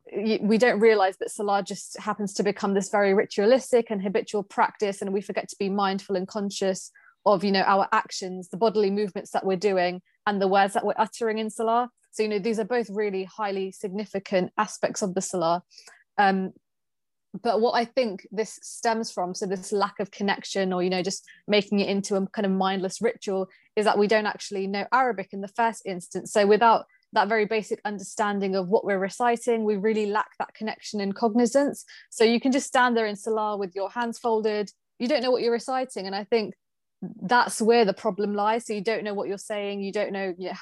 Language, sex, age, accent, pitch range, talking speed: English, female, 20-39, British, 195-225 Hz, 215 wpm